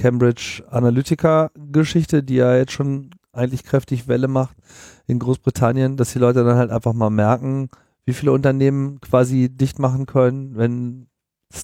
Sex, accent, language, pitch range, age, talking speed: male, German, German, 115-135 Hz, 40-59, 150 wpm